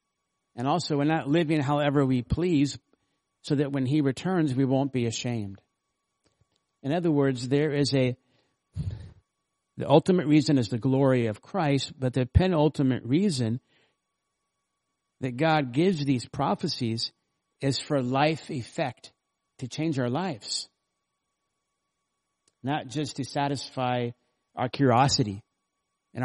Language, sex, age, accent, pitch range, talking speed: English, male, 50-69, American, 130-155 Hz, 125 wpm